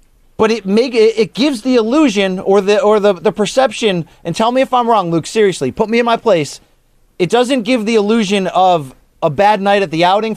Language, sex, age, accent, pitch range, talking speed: English, male, 30-49, American, 180-225 Hz, 220 wpm